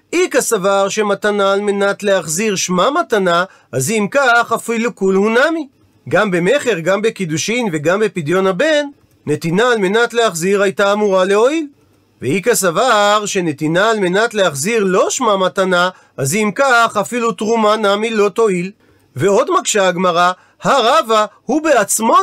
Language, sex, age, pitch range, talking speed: Hebrew, male, 40-59, 180-240 Hz, 140 wpm